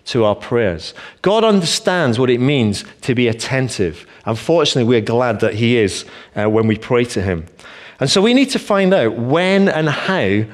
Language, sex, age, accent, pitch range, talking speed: English, male, 40-59, British, 110-145 Hz, 190 wpm